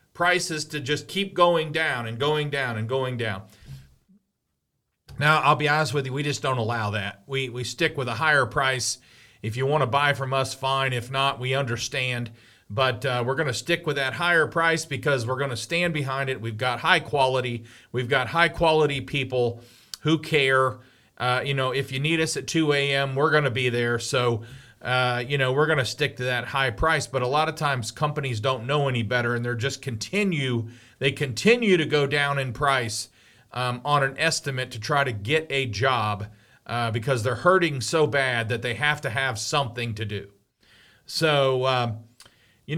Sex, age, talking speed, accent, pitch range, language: male, 40-59, 205 wpm, American, 120-150 Hz, English